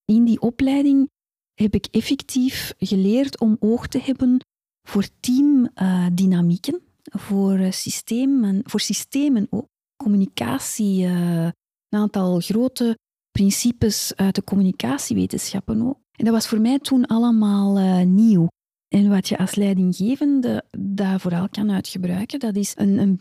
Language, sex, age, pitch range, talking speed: Dutch, female, 40-59, 195-240 Hz, 130 wpm